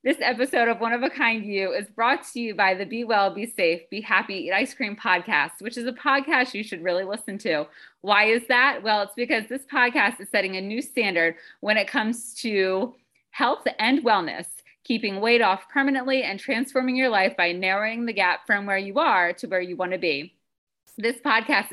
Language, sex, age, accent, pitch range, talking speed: English, female, 30-49, American, 185-245 Hz, 215 wpm